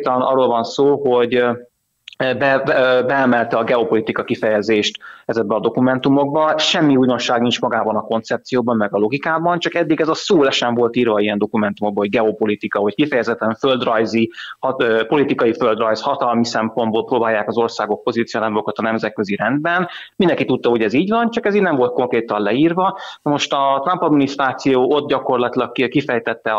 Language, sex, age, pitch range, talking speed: Hungarian, male, 30-49, 115-135 Hz, 160 wpm